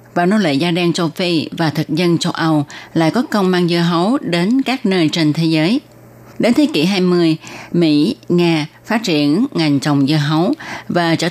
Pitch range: 150-190 Hz